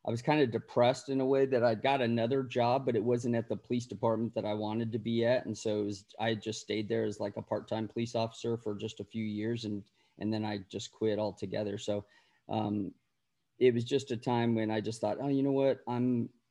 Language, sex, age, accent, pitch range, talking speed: English, male, 30-49, American, 110-125 Hz, 240 wpm